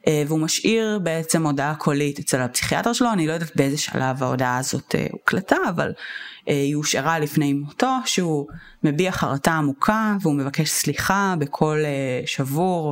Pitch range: 140-185 Hz